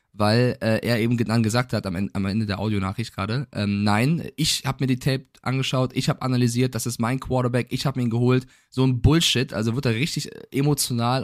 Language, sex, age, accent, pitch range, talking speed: German, male, 20-39, German, 110-135 Hz, 220 wpm